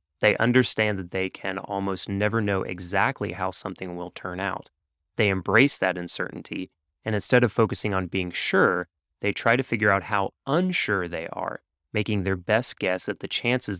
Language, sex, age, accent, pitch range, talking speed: English, male, 30-49, American, 90-110 Hz, 180 wpm